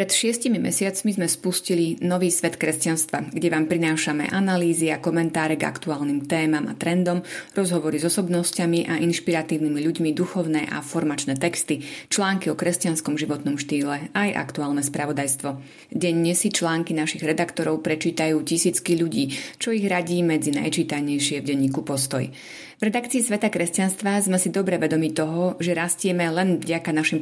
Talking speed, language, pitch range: 150 wpm, Slovak, 155-175 Hz